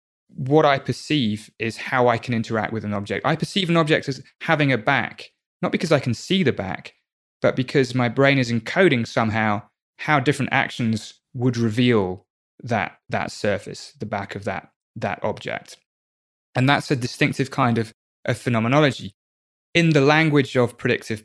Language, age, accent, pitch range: English, 20-39, British, 110-135 Hz